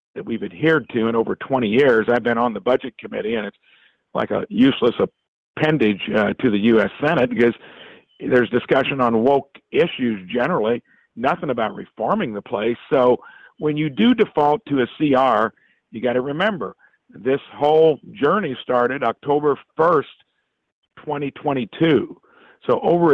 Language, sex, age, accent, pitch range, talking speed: English, male, 50-69, American, 120-150 Hz, 155 wpm